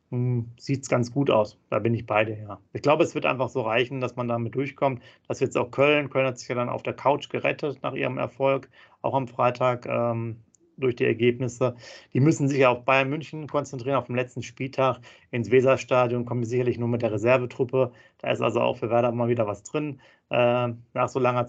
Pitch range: 120-145 Hz